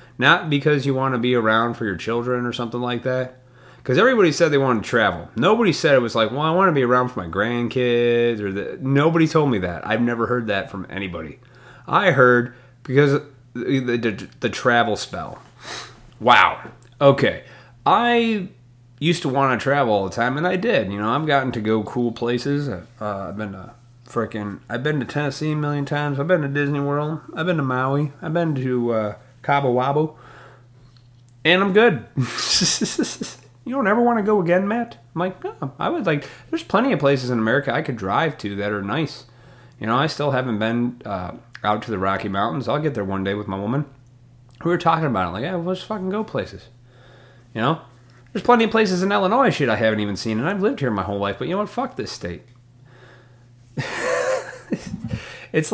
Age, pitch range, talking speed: 30-49, 120-150 Hz, 210 wpm